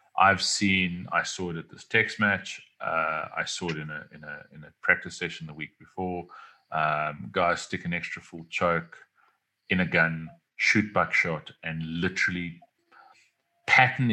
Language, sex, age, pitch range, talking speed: English, male, 30-49, 80-105 Hz, 165 wpm